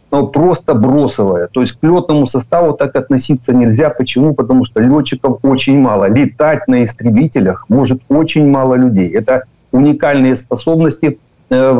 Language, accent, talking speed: Ukrainian, native, 140 wpm